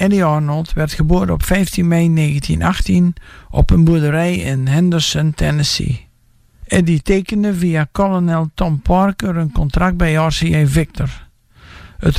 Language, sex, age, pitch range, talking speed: English, male, 60-79, 145-175 Hz, 130 wpm